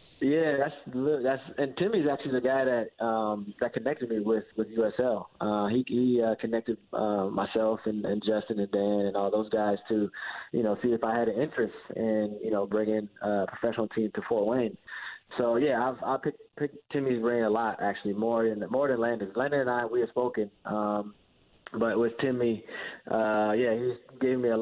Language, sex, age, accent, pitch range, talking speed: English, male, 20-39, American, 105-120 Hz, 200 wpm